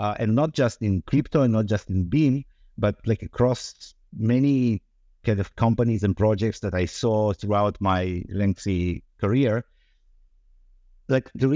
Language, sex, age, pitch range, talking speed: English, male, 50-69, 100-125 Hz, 150 wpm